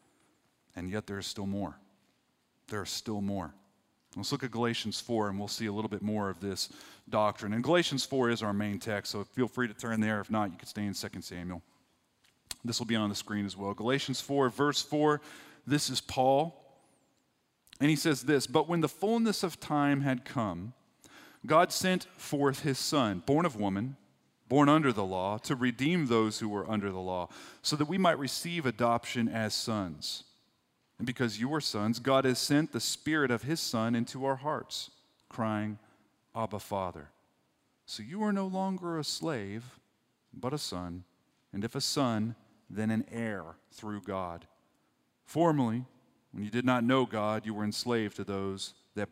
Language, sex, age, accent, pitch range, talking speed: English, male, 40-59, American, 100-135 Hz, 185 wpm